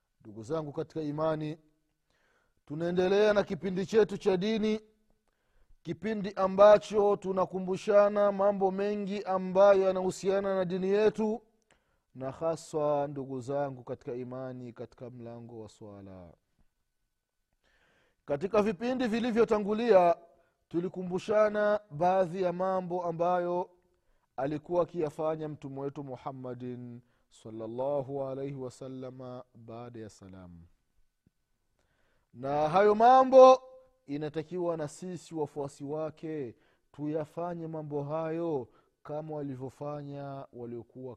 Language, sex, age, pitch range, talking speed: Swahili, male, 30-49, 135-200 Hz, 95 wpm